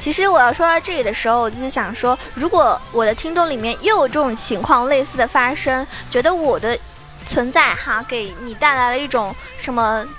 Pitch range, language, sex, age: 235-320 Hz, Chinese, female, 20-39